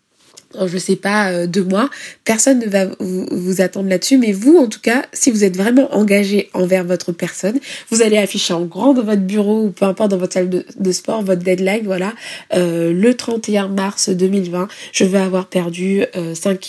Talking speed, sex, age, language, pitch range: 200 wpm, female, 20-39, French, 190-225 Hz